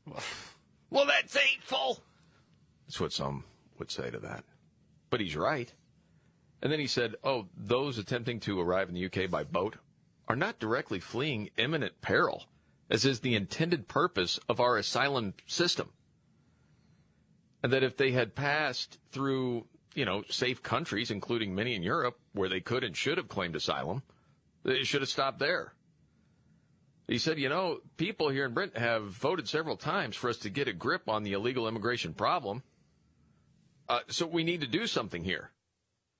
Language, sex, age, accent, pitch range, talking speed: English, male, 40-59, American, 100-135 Hz, 165 wpm